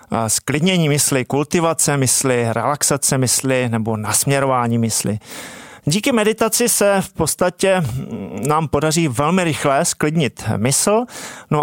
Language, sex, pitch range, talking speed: Czech, male, 135-180 Hz, 110 wpm